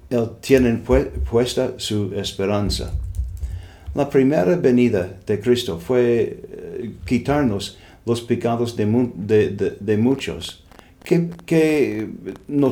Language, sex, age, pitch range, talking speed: English, male, 50-69, 105-130 Hz, 115 wpm